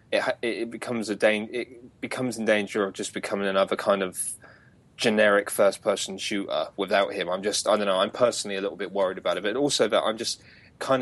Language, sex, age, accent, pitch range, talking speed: English, male, 20-39, British, 105-125 Hz, 220 wpm